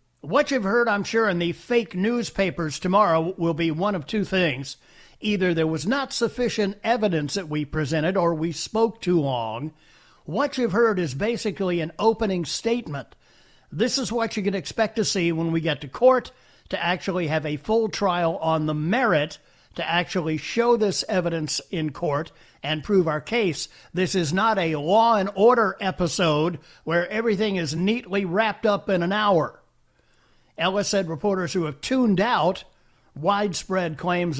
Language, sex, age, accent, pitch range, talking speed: English, male, 50-69, American, 155-210 Hz, 170 wpm